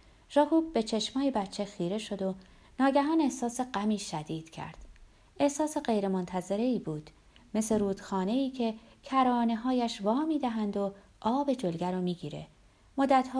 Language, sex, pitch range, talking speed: Persian, female, 175-255 Hz, 130 wpm